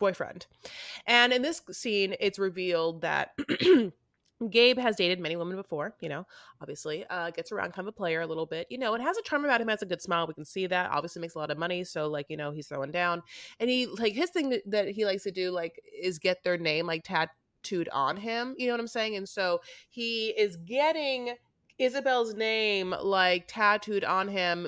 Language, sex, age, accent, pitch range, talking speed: English, female, 30-49, American, 170-230 Hz, 220 wpm